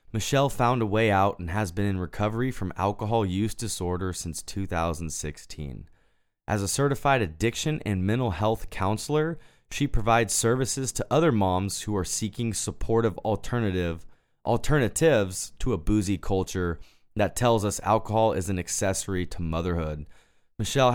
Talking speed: 145 wpm